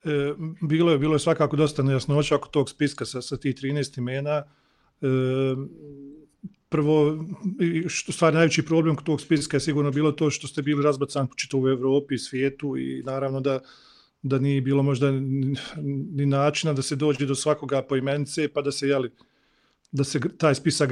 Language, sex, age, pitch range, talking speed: English, male, 40-59, 135-160 Hz, 170 wpm